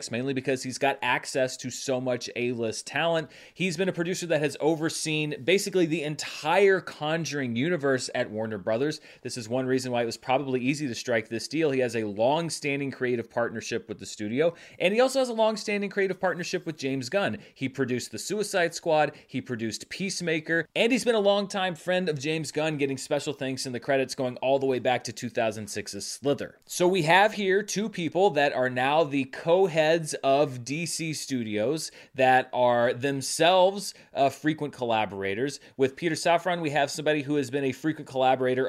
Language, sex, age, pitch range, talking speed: English, male, 30-49, 130-170 Hz, 190 wpm